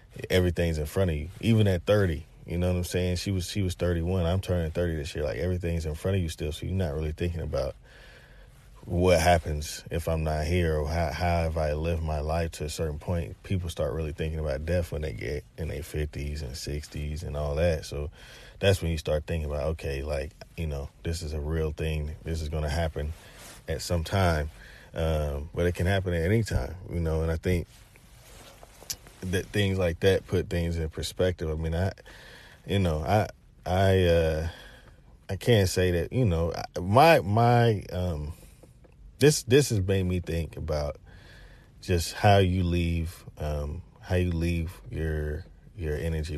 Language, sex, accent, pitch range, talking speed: English, male, American, 75-90 Hz, 195 wpm